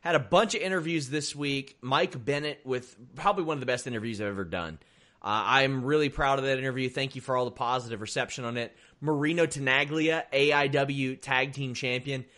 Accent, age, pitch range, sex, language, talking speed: American, 30-49, 120-150 Hz, male, English, 200 wpm